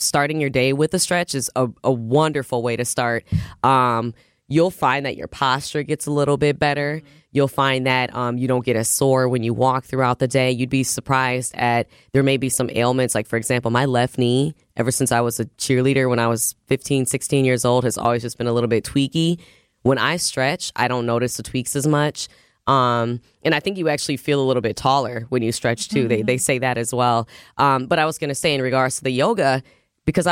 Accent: American